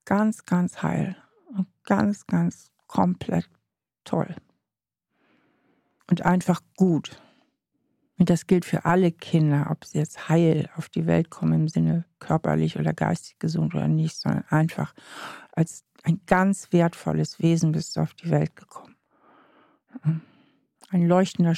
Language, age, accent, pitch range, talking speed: German, 60-79, German, 160-195 Hz, 135 wpm